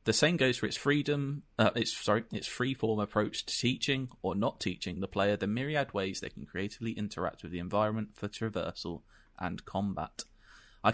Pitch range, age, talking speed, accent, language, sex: 95-120 Hz, 20-39, 185 wpm, British, English, male